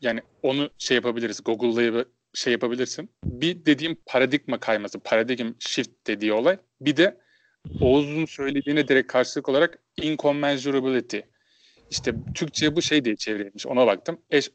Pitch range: 130-160 Hz